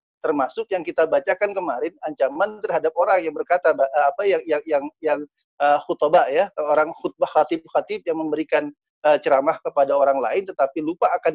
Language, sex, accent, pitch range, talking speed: Indonesian, male, native, 150-215 Hz, 160 wpm